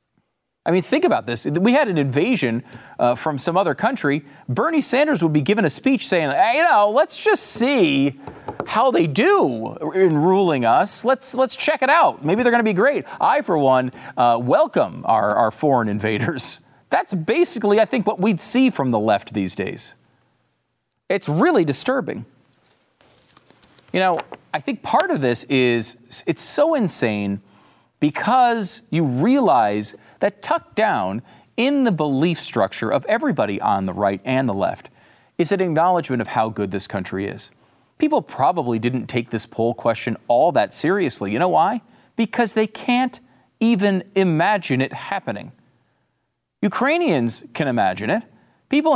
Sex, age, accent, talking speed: male, 40-59, American, 160 wpm